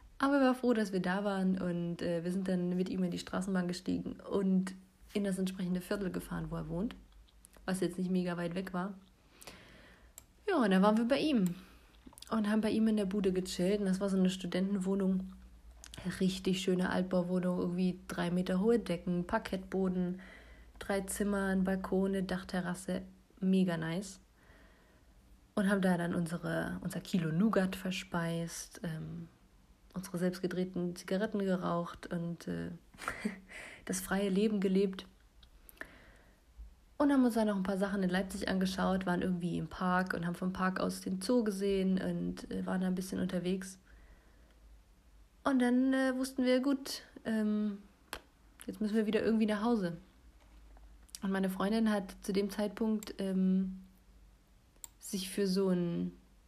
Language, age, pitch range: German, 30-49, 175-205 Hz